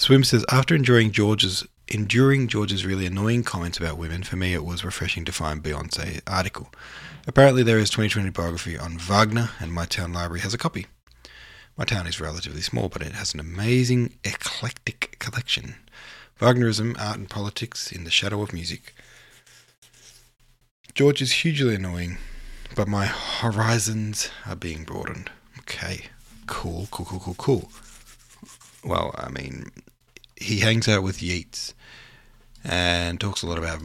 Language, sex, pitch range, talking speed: English, male, 85-120 Hz, 150 wpm